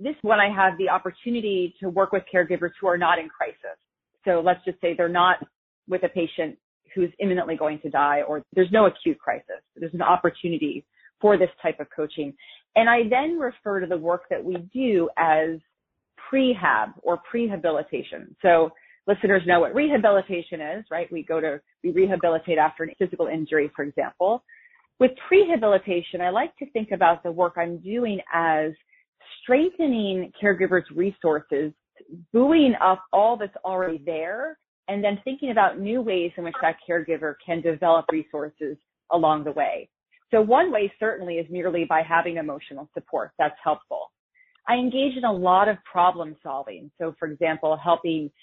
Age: 30-49